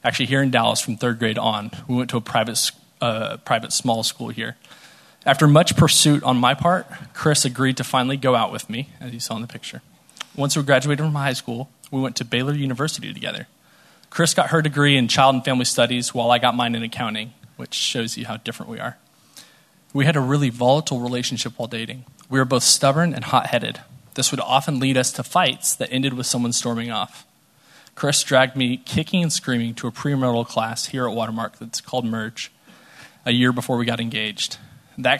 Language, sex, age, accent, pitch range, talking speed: English, male, 20-39, American, 115-135 Hz, 210 wpm